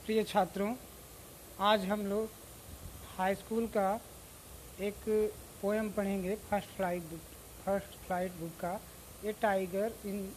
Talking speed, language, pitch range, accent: 120 wpm, Hindi, 185-225 Hz, native